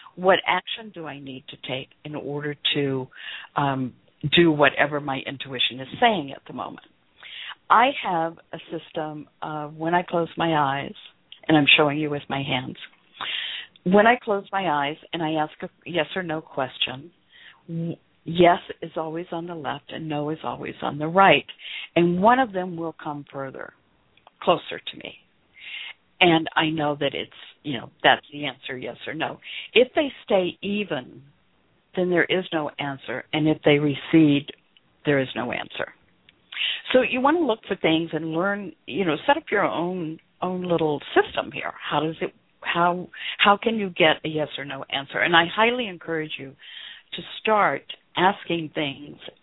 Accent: American